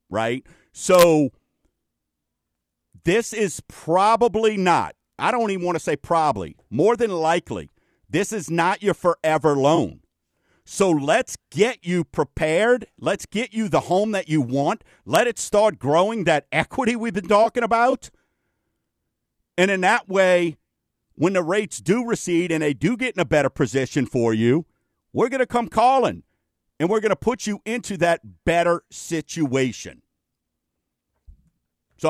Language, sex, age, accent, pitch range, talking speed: English, male, 50-69, American, 150-200 Hz, 150 wpm